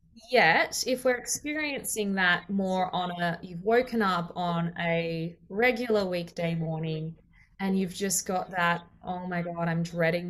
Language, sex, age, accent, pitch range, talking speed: English, female, 20-39, Australian, 175-240 Hz, 150 wpm